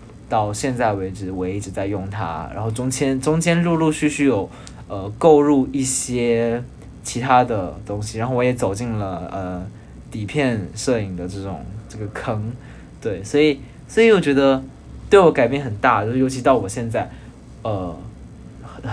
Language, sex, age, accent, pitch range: Chinese, male, 20-39, native, 105-130 Hz